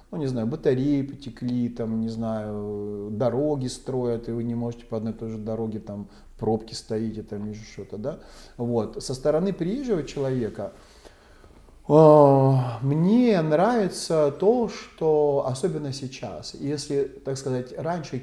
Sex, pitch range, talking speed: male, 115-145 Hz, 140 wpm